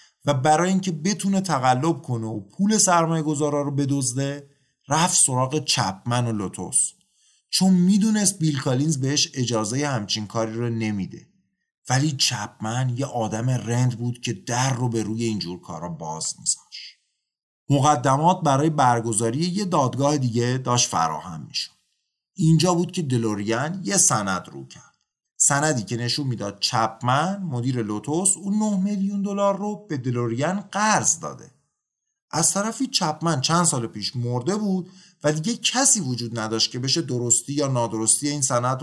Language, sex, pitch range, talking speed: Persian, male, 120-175 Hz, 145 wpm